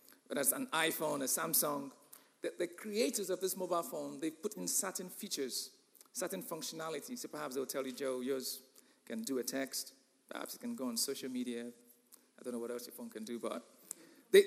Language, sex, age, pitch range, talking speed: English, male, 40-59, 170-250 Hz, 205 wpm